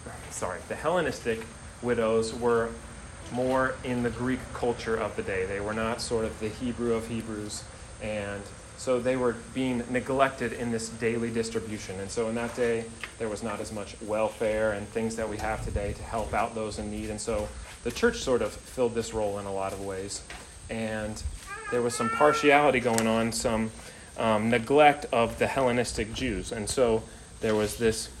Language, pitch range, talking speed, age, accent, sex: English, 105-120 Hz, 185 wpm, 30-49, American, male